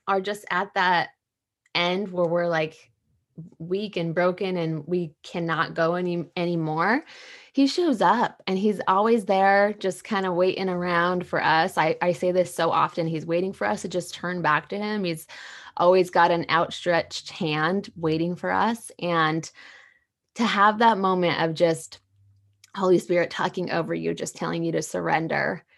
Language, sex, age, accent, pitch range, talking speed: English, female, 20-39, American, 165-200 Hz, 170 wpm